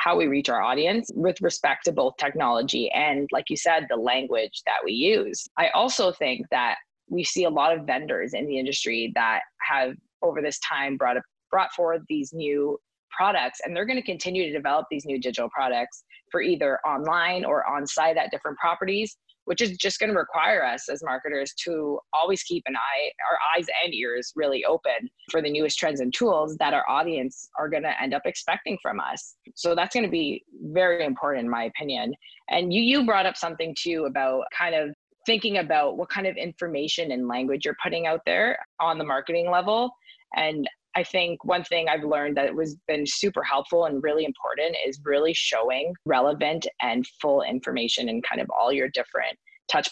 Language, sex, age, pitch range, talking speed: English, female, 20-39, 145-185 Hz, 200 wpm